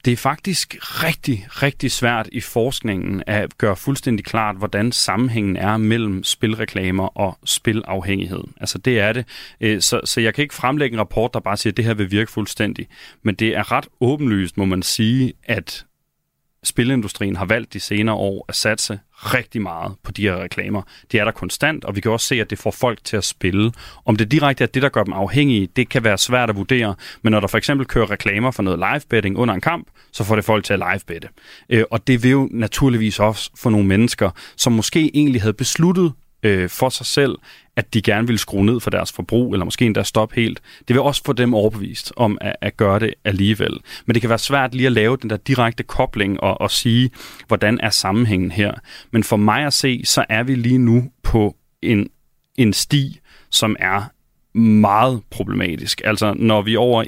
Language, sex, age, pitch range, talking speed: Danish, male, 30-49, 100-125 Hz, 210 wpm